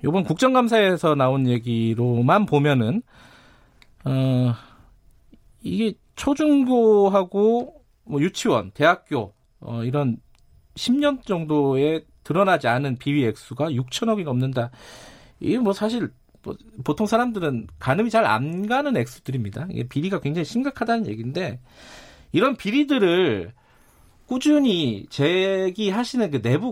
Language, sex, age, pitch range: Korean, male, 40-59, 130-200 Hz